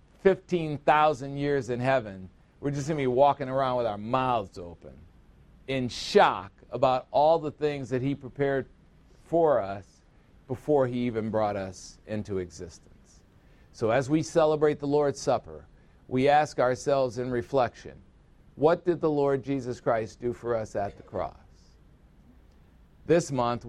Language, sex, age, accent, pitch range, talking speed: English, male, 50-69, American, 110-150 Hz, 150 wpm